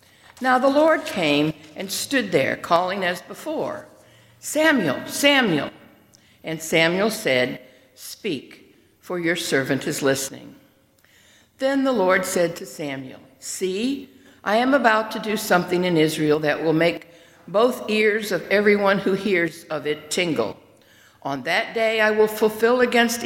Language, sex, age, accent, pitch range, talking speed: English, female, 60-79, American, 155-220 Hz, 140 wpm